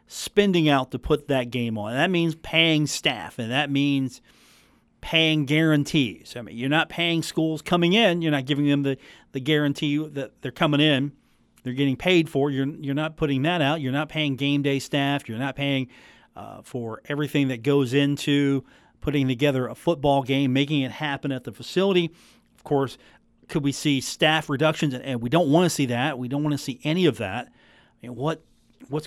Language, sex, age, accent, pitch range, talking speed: English, male, 40-59, American, 140-170 Hz, 195 wpm